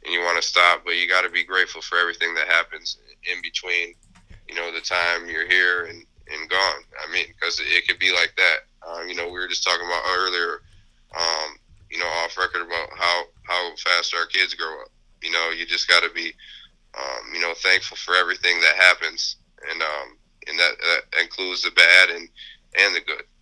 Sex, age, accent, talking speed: male, 20-39, American, 215 wpm